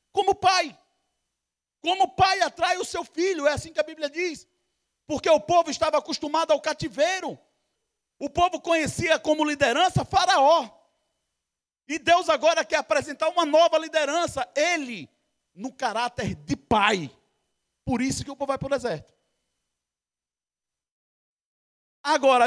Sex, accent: male, Brazilian